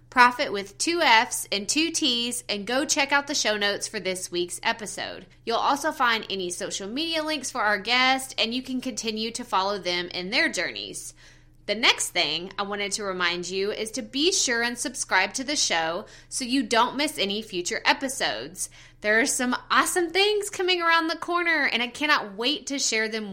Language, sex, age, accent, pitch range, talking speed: English, female, 20-39, American, 200-295 Hz, 200 wpm